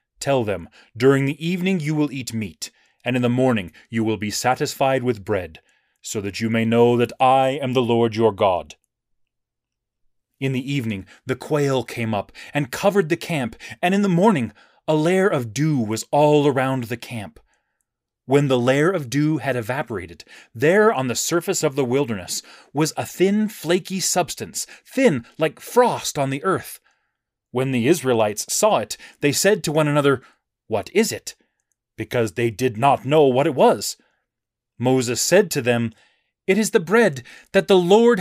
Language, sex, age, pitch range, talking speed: English, male, 30-49, 125-190 Hz, 175 wpm